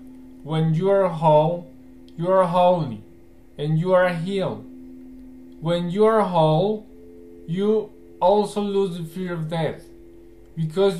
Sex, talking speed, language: male, 125 wpm, Hebrew